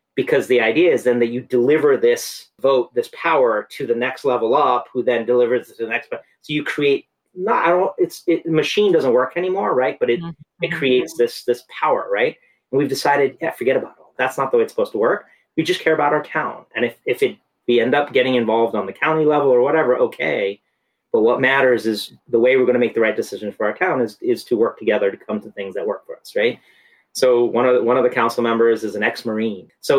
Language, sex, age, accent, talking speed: English, male, 30-49, American, 245 wpm